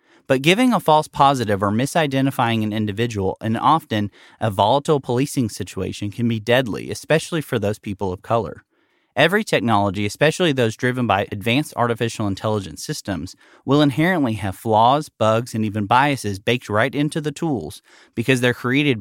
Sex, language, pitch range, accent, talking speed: male, English, 105-145 Hz, American, 160 wpm